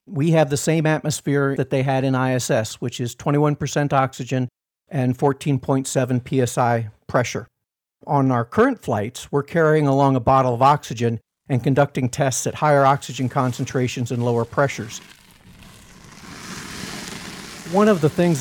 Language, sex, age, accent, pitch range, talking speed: English, male, 60-79, American, 130-160 Hz, 140 wpm